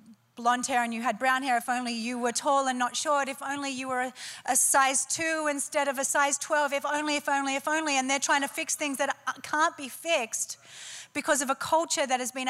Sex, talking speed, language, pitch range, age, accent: female, 240 wpm, English, 215-275 Hz, 30-49, Australian